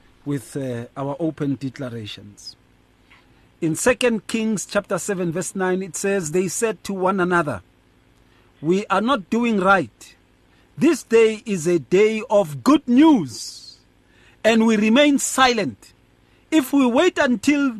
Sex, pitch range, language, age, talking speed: male, 155-245 Hz, English, 50-69, 135 wpm